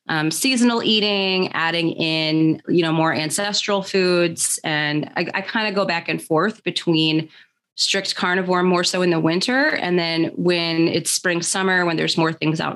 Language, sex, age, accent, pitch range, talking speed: English, female, 30-49, American, 160-185 Hz, 175 wpm